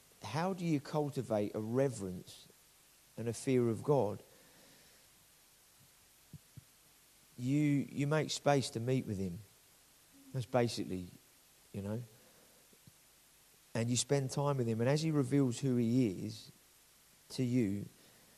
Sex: male